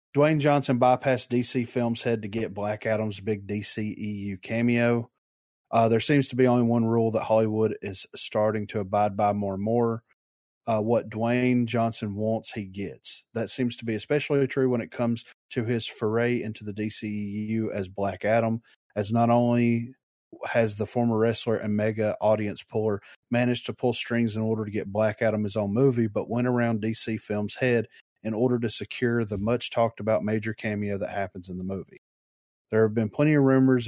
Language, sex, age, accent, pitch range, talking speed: English, male, 30-49, American, 105-120 Hz, 185 wpm